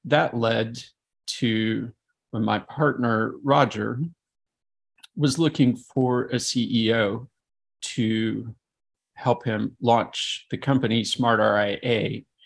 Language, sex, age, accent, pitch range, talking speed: English, male, 40-59, American, 110-130 Hz, 95 wpm